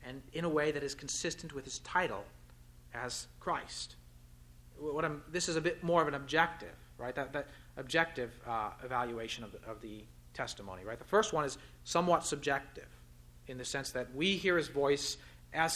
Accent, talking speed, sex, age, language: American, 185 wpm, male, 30-49, English